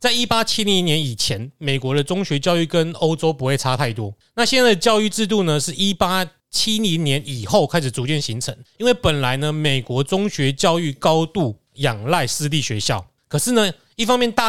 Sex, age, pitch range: male, 30-49, 135-195 Hz